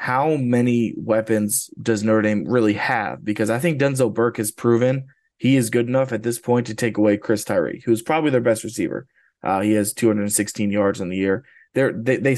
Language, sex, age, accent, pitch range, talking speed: English, male, 20-39, American, 105-120 Hz, 205 wpm